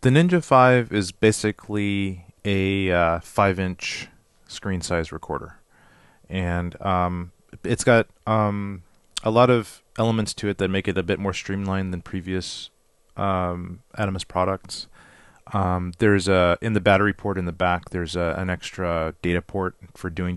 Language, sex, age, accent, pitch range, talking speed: English, male, 30-49, American, 90-105 Hz, 150 wpm